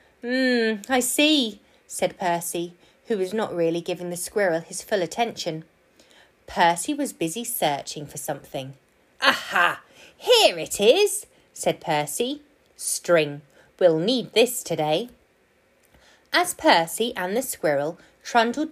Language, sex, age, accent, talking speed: English, female, 20-39, British, 120 wpm